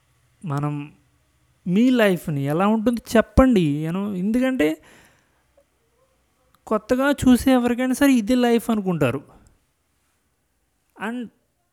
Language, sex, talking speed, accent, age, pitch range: Telugu, male, 80 wpm, native, 30-49, 145-220 Hz